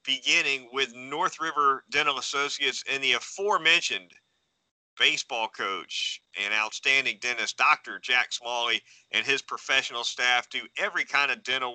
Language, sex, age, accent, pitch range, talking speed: English, male, 40-59, American, 120-145 Hz, 135 wpm